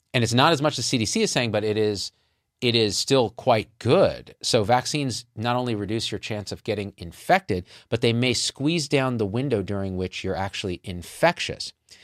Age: 40-59